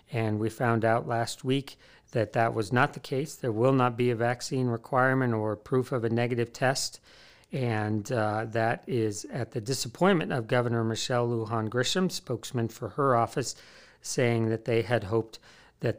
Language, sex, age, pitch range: English, male, 40-59, 115-135 Hz